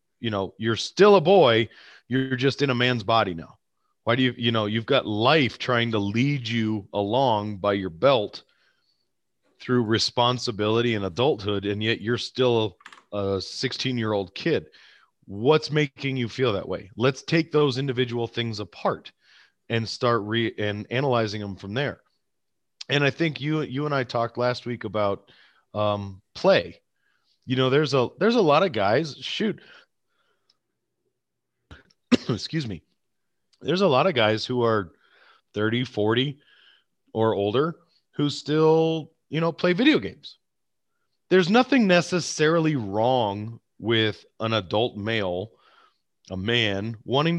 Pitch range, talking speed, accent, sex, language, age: 110-145 Hz, 145 wpm, American, male, English, 30-49